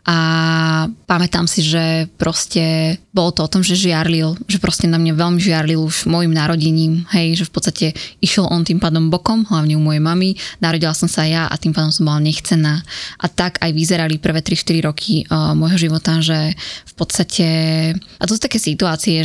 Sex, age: female, 20-39